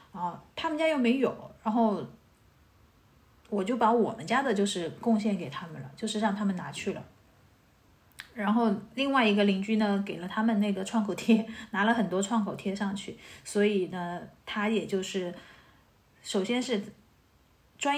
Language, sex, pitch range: Chinese, female, 195-235 Hz